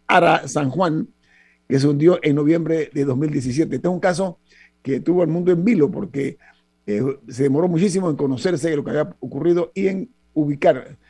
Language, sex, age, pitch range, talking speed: Spanish, male, 50-69, 135-175 Hz, 190 wpm